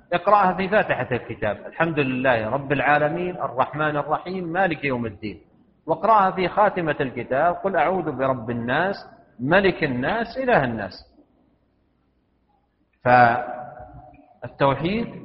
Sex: male